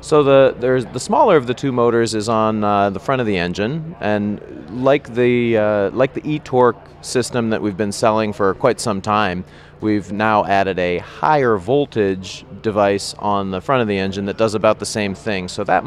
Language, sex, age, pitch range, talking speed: English, male, 30-49, 100-120 Hz, 205 wpm